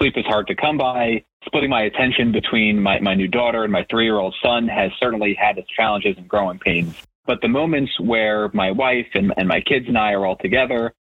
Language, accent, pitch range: English, American, 105-135 Hz